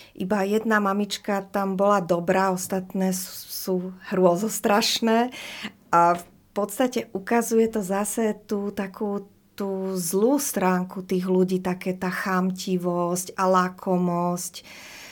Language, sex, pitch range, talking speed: Slovak, female, 185-210 Hz, 105 wpm